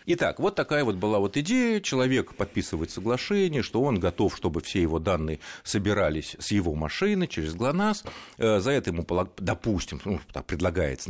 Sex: male